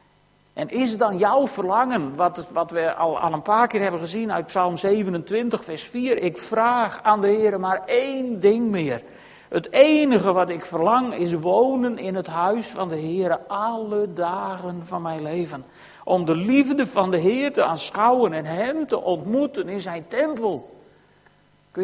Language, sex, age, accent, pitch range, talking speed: Dutch, male, 60-79, Dutch, 175-225 Hz, 175 wpm